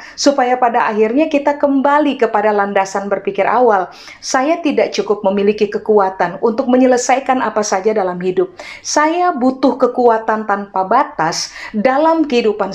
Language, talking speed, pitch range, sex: Indonesian, 125 wpm, 200-265 Hz, female